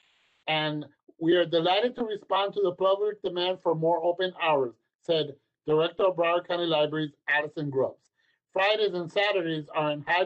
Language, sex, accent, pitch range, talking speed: English, male, American, 145-185 Hz, 165 wpm